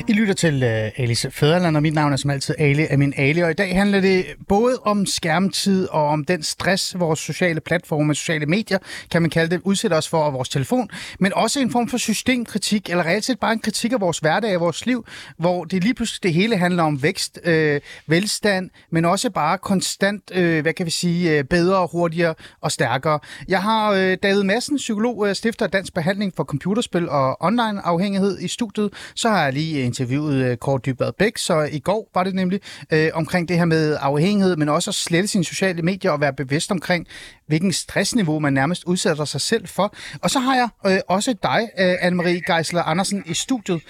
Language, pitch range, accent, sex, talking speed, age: Danish, 155-200 Hz, native, male, 205 wpm, 30-49